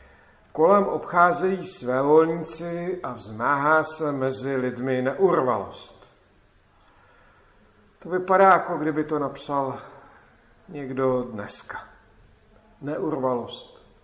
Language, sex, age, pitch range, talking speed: Czech, male, 50-69, 125-160 Hz, 80 wpm